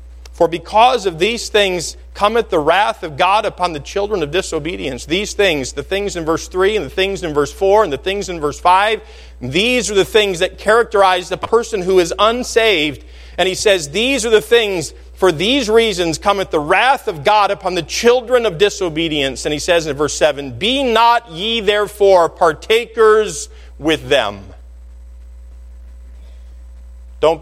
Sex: male